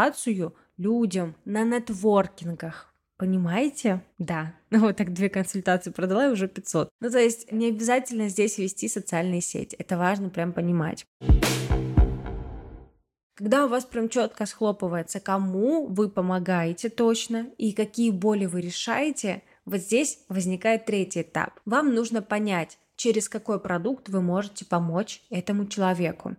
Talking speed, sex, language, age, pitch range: 130 wpm, female, Russian, 20-39, 185-230 Hz